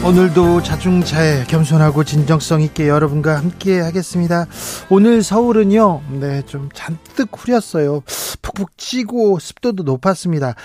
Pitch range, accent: 145-185 Hz, native